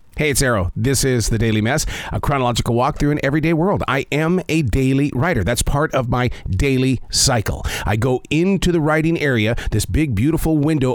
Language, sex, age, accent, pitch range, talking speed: English, male, 40-59, American, 110-145 Hz, 190 wpm